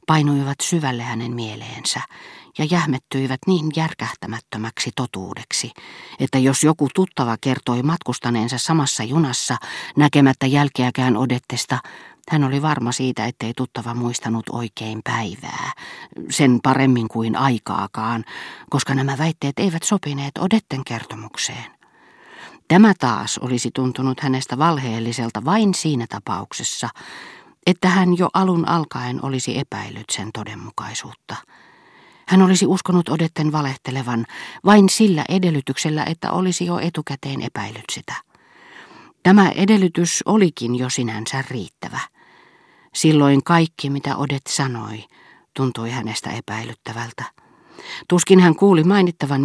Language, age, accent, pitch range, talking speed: Finnish, 40-59, native, 120-165 Hz, 110 wpm